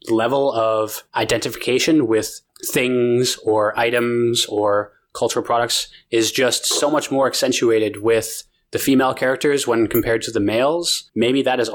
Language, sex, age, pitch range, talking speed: English, male, 20-39, 110-130 Hz, 145 wpm